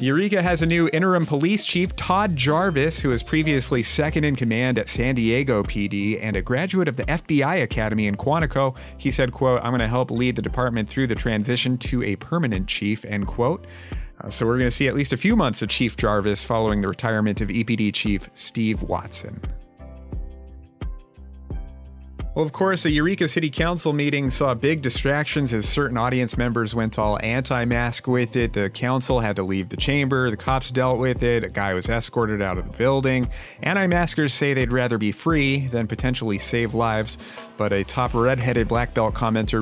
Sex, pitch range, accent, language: male, 105-135 Hz, American, English